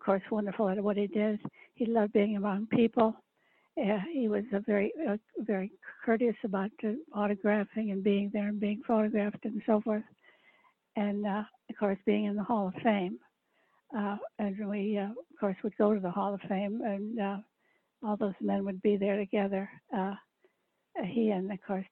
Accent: American